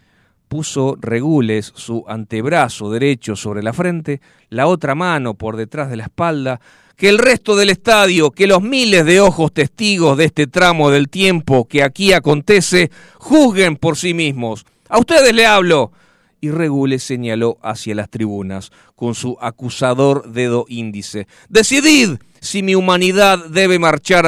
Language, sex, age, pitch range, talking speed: Spanish, male, 40-59, 145-200 Hz, 150 wpm